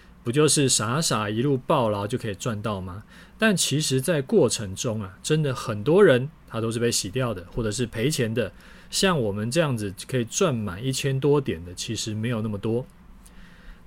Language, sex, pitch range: Chinese, male, 115-155 Hz